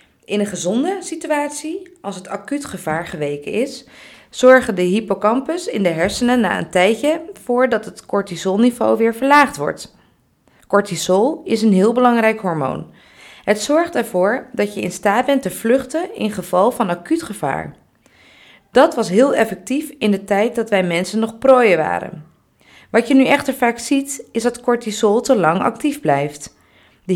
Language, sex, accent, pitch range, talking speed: Dutch, female, Dutch, 195-270 Hz, 165 wpm